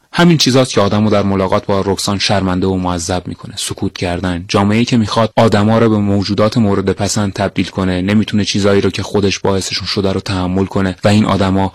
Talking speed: 200 wpm